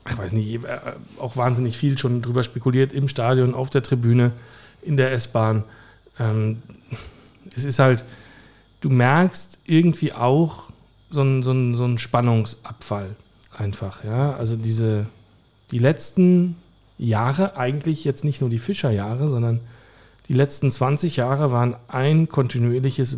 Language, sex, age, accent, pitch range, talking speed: German, male, 40-59, German, 115-140 Hz, 125 wpm